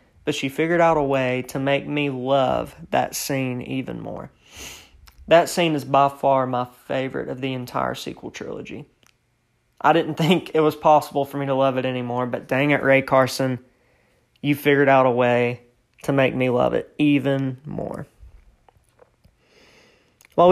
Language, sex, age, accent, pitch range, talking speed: English, male, 20-39, American, 125-150 Hz, 165 wpm